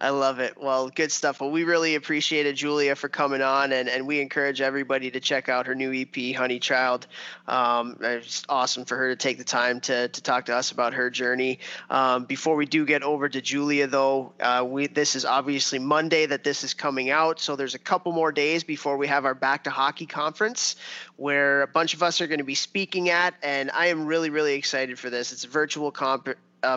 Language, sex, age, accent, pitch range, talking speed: English, male, 20-39, American, 130-150 Hz, 230 wpm